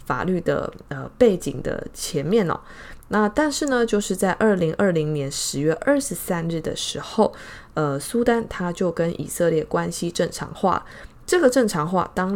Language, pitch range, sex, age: Chinese, 160-230 Hz, female, 20-39